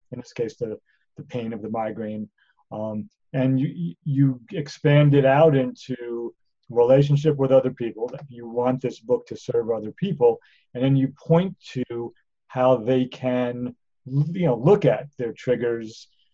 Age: 40-59